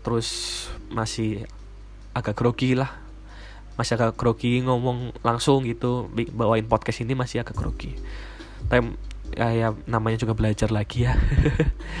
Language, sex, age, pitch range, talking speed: Indonesian, male, 10-29, 115-130 Hz, 120 wpm